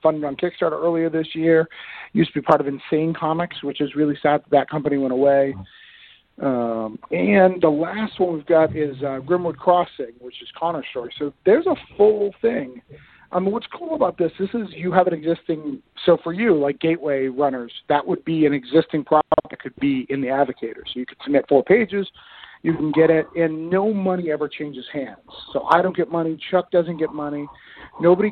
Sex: male